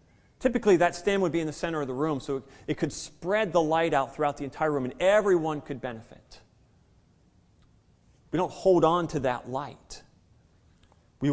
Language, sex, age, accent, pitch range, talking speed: English, male, 30-49, American, 135-195 Hz, 180 wpm